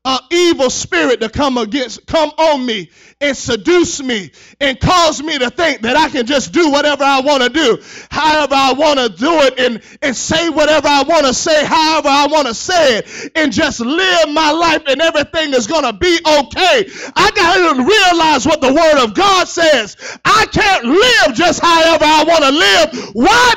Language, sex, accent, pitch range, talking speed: English, male, American, 295-400 Hz, 205 wpm